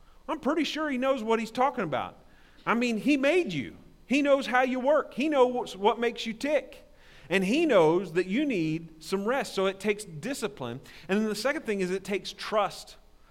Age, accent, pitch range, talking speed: 40-59, American, 155-215 Hz, 205 wpm